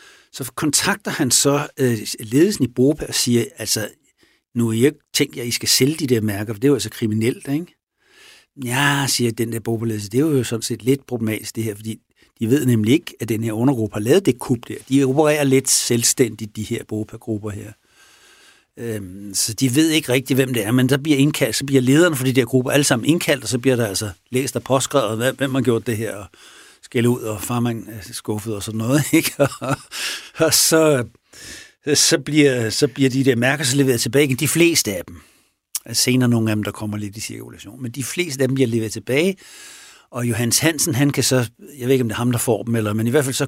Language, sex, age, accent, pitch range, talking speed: Danish, male, 60-79, native, 115-145 Hz, 235 wpm